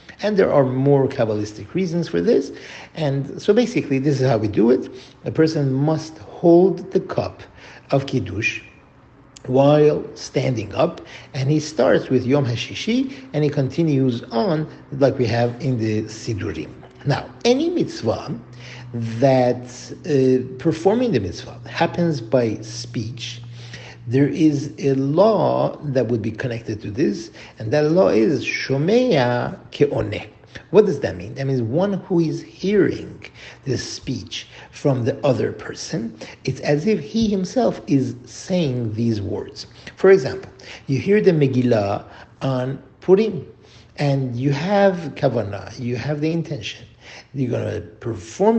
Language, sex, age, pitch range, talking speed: English, male, 50-69, 120-160 Hz, 145 wpm